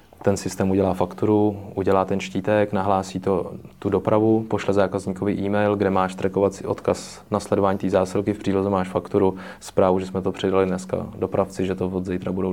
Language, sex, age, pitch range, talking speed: Czech, male, 20-39, 95-100 Hz, 175 wpm